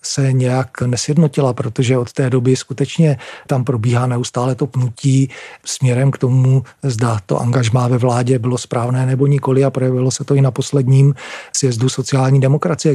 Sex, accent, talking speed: male, native, 160 wpm